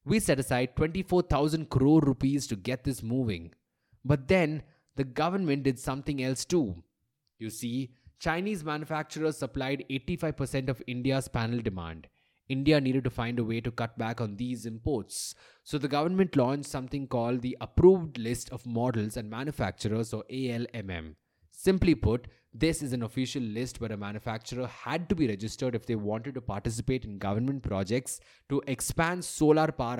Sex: male